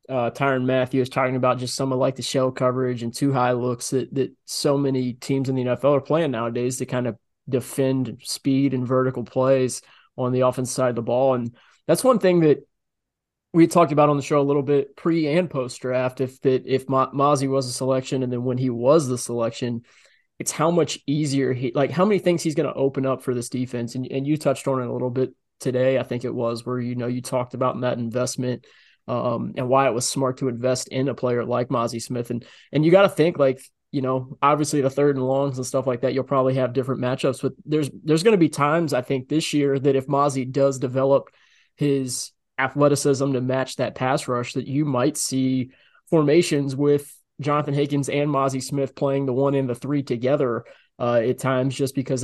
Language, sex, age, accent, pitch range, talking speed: English, male, 20-39, American, 125-140 Hz, 225 wpm